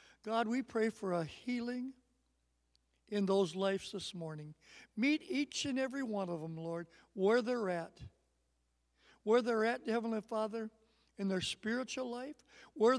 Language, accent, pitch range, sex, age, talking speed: English, American, 185-235 Hz, male, 60-79, 150 wpm